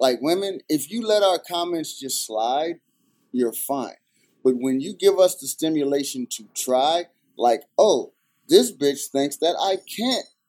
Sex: male